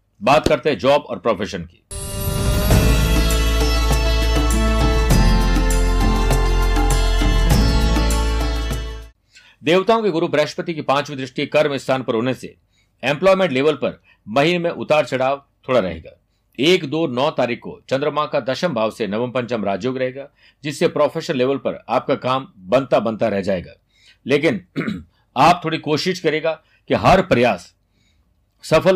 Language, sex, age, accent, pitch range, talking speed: Hindi, male, 60-79, native, 105-155 Hz, 125 wpm